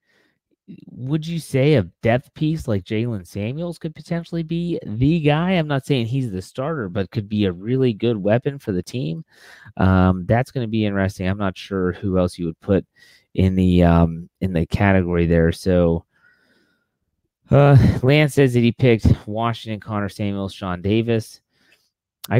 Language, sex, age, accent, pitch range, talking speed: English, male, 30-49, American, 90-120 Hz, 170 wpm